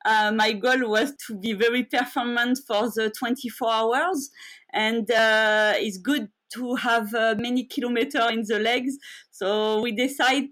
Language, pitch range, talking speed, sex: English, 215-255 Hz, 155 wpm, female